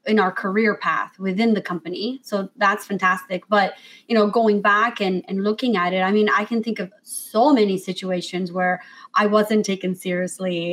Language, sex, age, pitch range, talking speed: English, female, 20-39, 185-230 Hz, 190 wpm